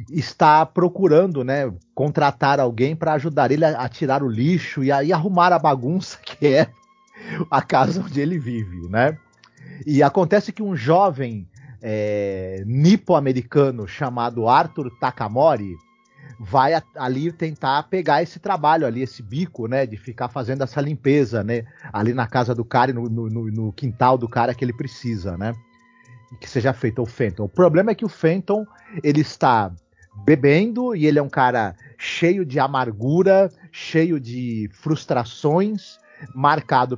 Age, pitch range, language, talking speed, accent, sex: 40-59, 120-170 Hz, Portuguese, 155 wpm, Brazilian, male